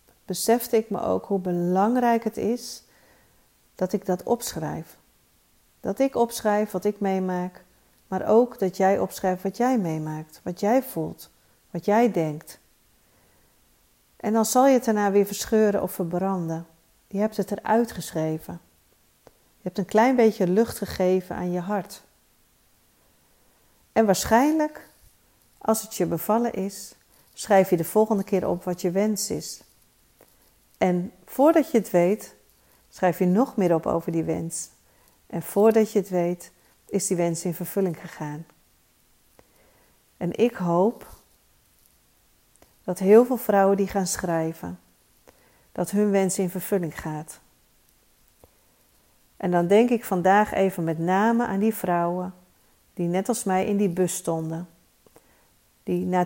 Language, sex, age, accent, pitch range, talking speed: Dutch, female, 40-59, Dutch, 170-215 Hz, 145 wpm